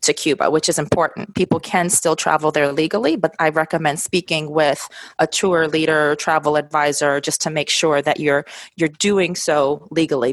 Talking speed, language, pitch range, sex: 185 wpm, English, 150-180 Hz, female